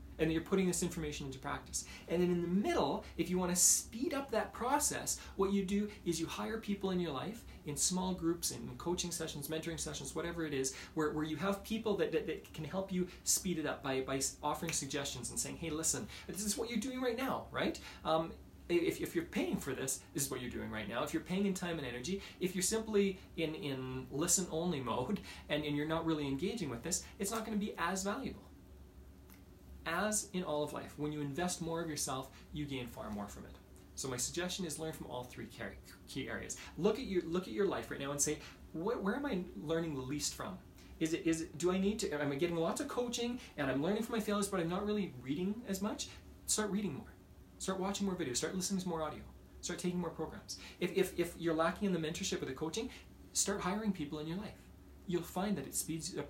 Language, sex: English, male